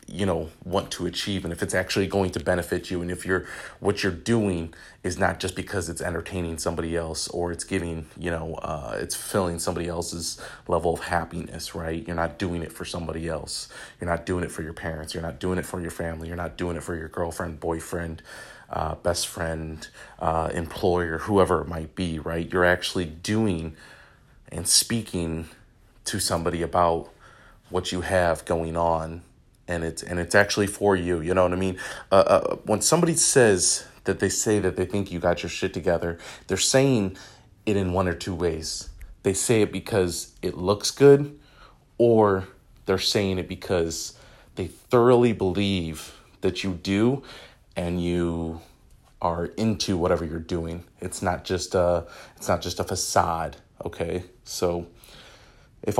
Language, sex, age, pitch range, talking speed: English, male, 30-49, 85-95 Hz, 180 wpm